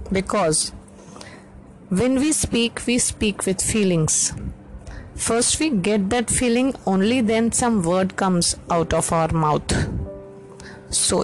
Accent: Indian